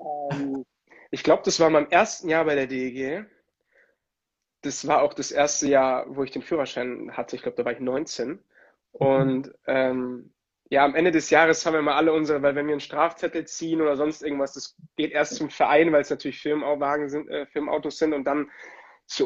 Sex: male